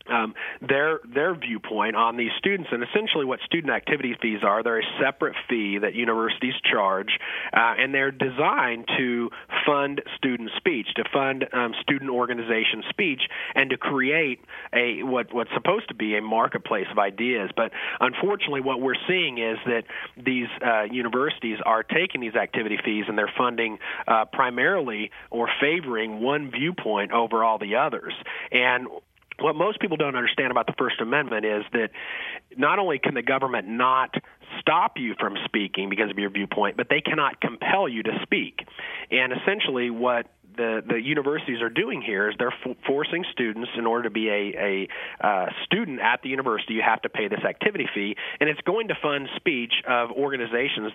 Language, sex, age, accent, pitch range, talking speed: English, male, 40-59, American, 110-130 Hz, 175 wpm